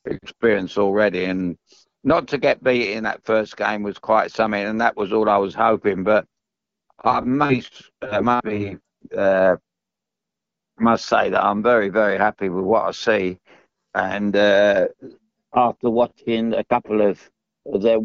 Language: English